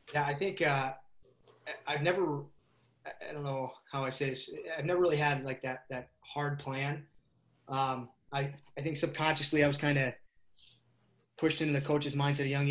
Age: 20-39